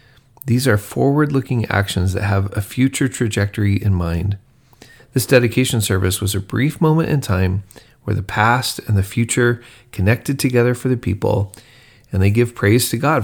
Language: English